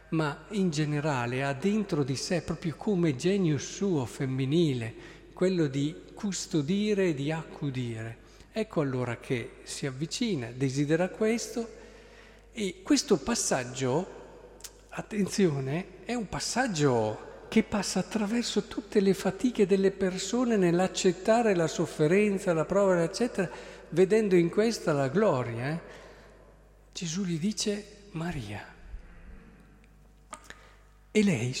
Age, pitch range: 50-69, 130-190 Hz